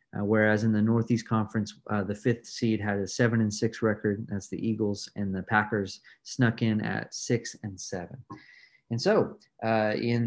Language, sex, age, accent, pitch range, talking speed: English, male, 30-49, American, 105-120 Hz, 185 wpm